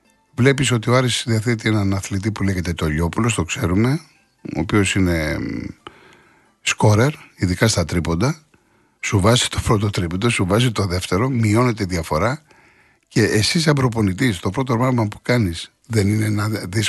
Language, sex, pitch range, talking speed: Greek, male, 95-125 Hz, 155 wpm